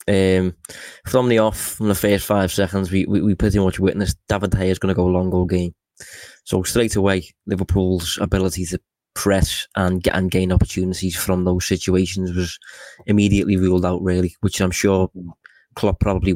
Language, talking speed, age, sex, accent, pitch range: English, 185 wpm, 20-39, male, British, 90-100 Hz